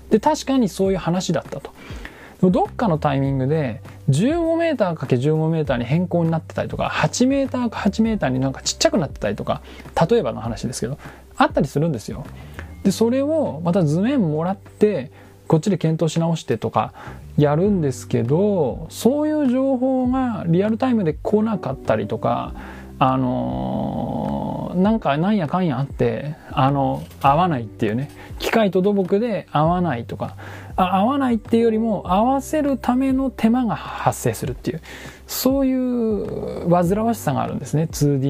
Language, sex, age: Japanese, male, 20-39